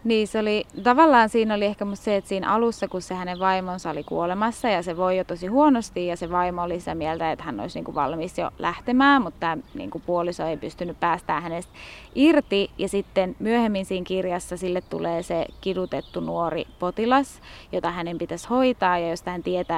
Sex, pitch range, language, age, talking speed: female, 175-205 Hz, Finnish, 20-39, 195 wpm